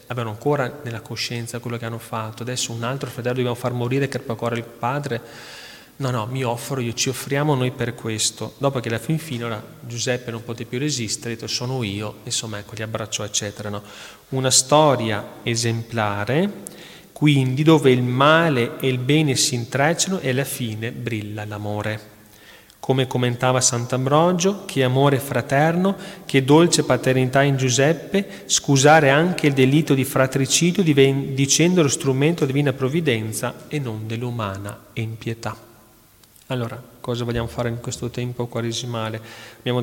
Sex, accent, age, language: male, native, 30-49, Italian